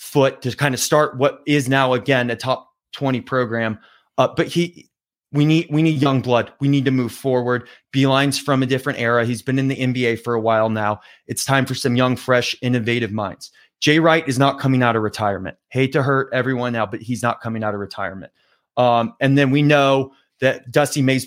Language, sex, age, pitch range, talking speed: English, male, 20-39, 115-140 Hz, 220 wpm